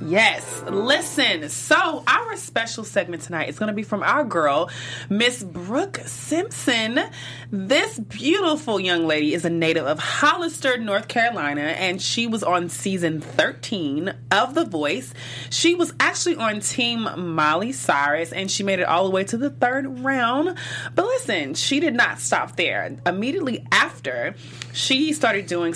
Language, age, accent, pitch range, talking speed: English, 20-39, American, 160-245 Hz, 155 wpm